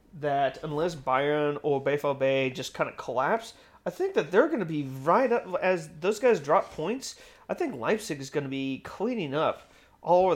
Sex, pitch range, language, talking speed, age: male, 135-170 Hz, English, 205 wpm, 30-49